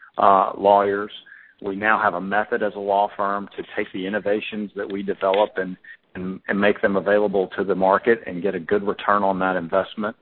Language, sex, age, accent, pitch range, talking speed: English, male, 40-59, American, 95-105 Hz, 205 wpm